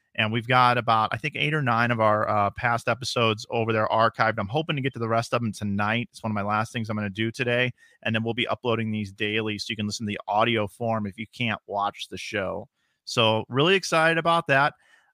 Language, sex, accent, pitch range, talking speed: English, male, American, 110-130 Hz, 255 wpm